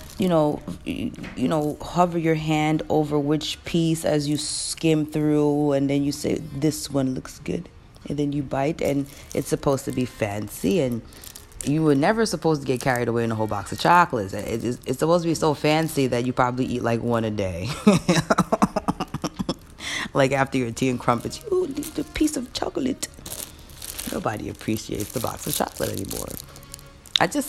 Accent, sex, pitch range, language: American, female, 110-160 Hz, English